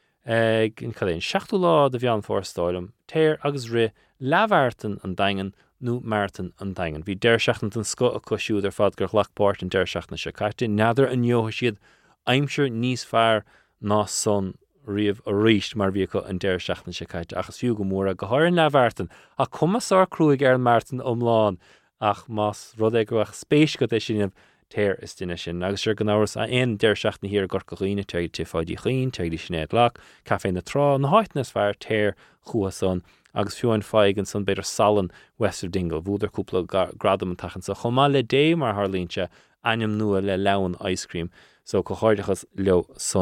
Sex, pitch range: male, 95-120 Hz